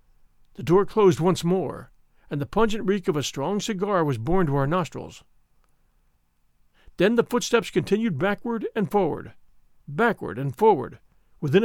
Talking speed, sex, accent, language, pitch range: 150 wpm, male, American, English, 150-220 Hz